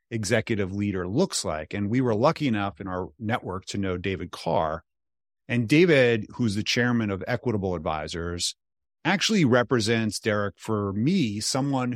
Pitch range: 95-125 Hz